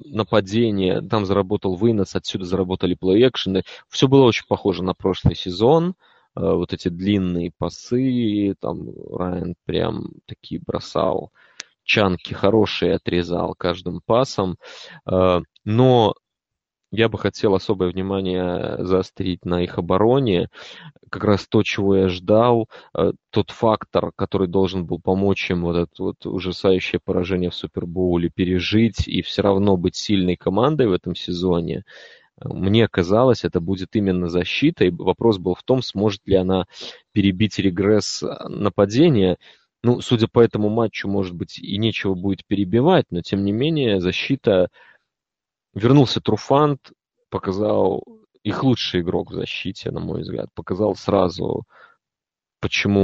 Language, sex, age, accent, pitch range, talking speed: Russian, male, 20-39, native, 90-110 Hz, 130 wpm